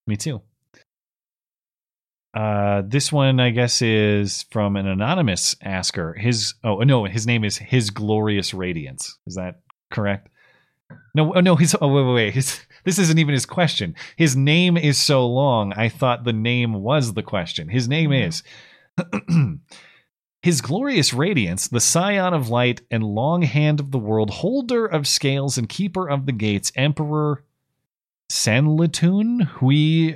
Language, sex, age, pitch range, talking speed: English, male, 30-49, 100-140 Hz, 150 wpm